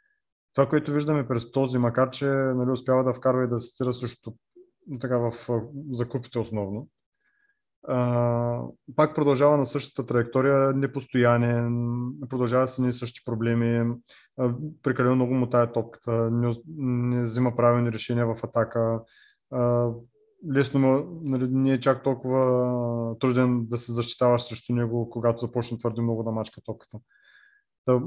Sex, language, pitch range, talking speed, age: male, Bulgarian, 115-130 Hz, 145 wpm, 30-49